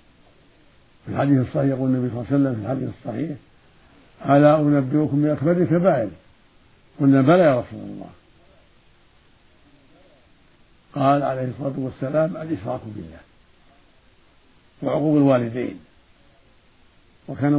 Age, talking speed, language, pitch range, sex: 60-79, 105 wpm, Arabic, 125-145 Hz, male